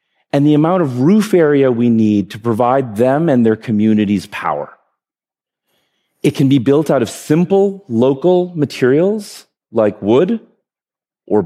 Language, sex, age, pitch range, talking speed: English, male, 40-59, 130-180 Hz, 140 wpm